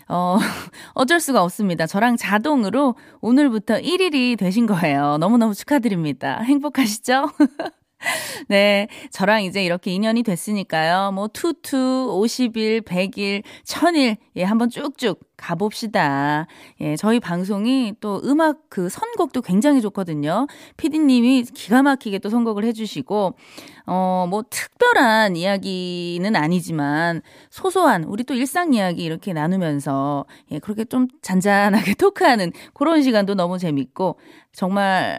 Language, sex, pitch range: Korean, female, 180-270 Hz